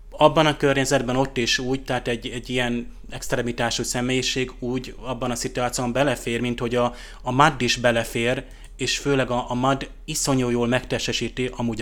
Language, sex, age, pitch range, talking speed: Hungarian, male, 20-39, 120-130 Hz, 160 wpm